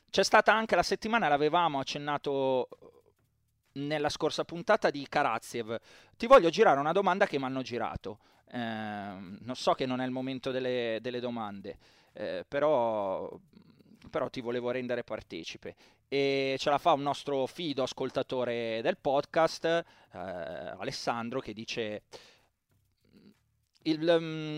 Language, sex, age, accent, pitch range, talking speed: Italian, male, 30-49, native, 125-160 Hz, 130 wpm